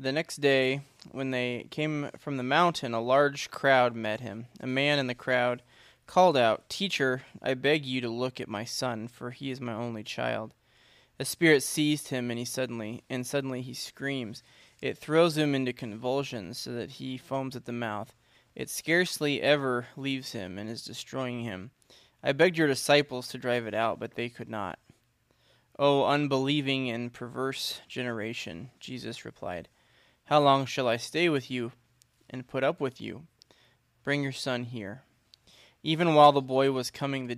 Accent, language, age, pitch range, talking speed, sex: American, English, 20-39, 120-140 Hz, 180 wpm, male